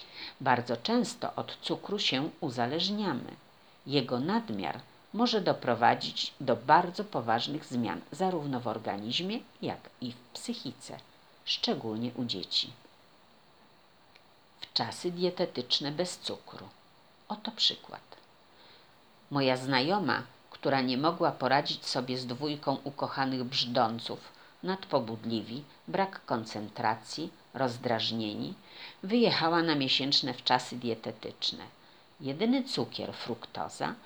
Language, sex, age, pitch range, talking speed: Polish, female, 50-69, 120-185 Hz, 95 wpm